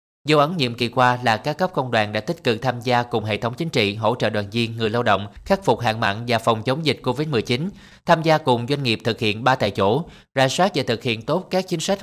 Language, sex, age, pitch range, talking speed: Vietnamese, male, 20-39, 110-140 Hz, 275 wpm